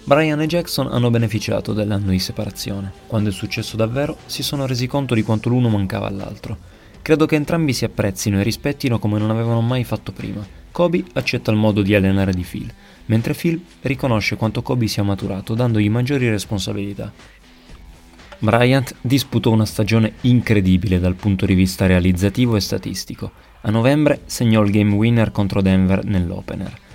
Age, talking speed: 30-49, 165 wpm